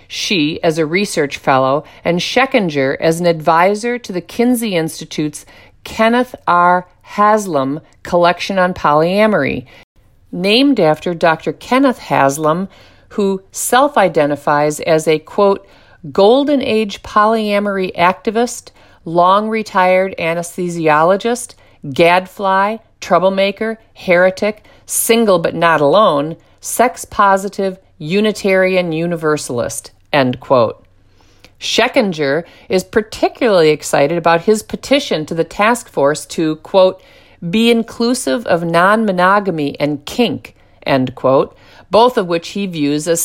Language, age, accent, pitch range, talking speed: English, 50-69, American, 160-215 Hz, 105 wpm